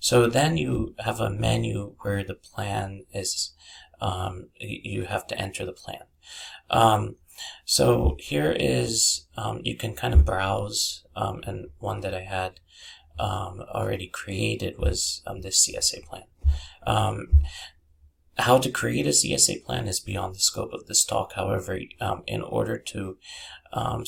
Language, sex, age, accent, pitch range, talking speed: English, male, 30-49, American, 75-100 Hz, 150 wpm